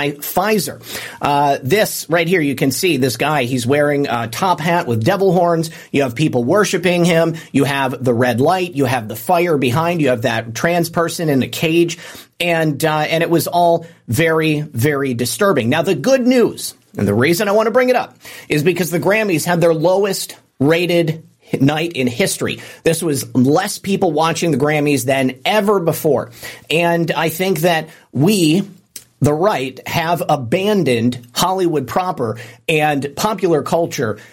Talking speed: 170 wpm